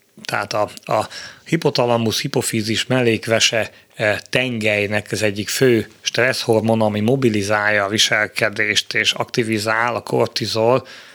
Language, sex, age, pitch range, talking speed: Hungarian, male, 30-49, 110-125 Hz, 110 wpm